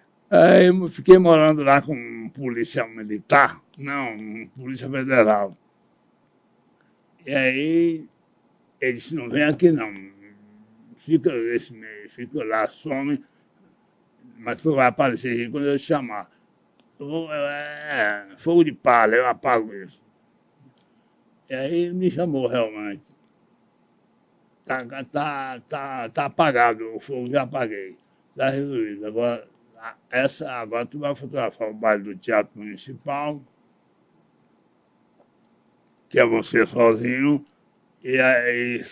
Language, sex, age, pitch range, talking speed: Portuguese, male, 60-79, 110-150 Hz, 120 wpm